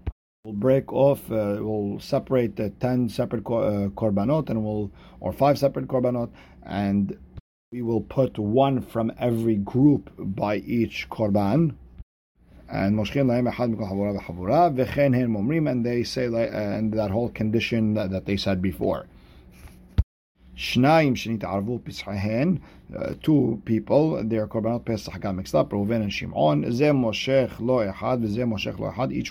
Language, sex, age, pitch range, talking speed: English, male, 50-69, 100-120 Hz, 115 wpm